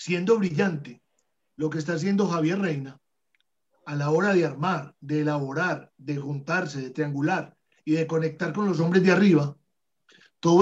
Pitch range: 160-195 Hz